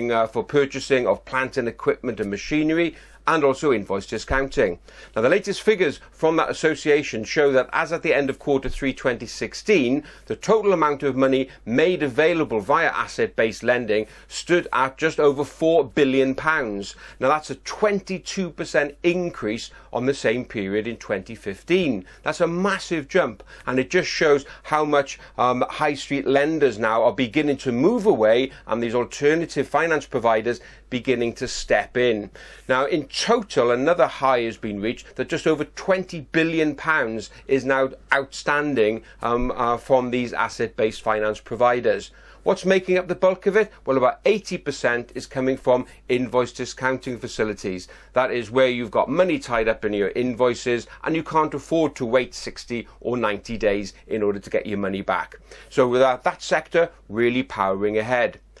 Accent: British